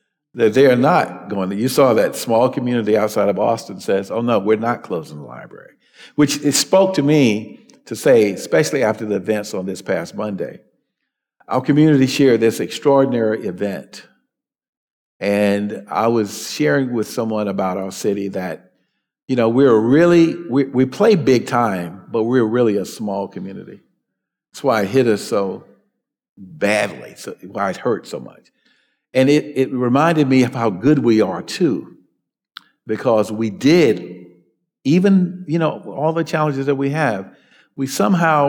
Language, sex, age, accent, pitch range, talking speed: English, male, 50-69, American, 110-145 Hz, 165 wpm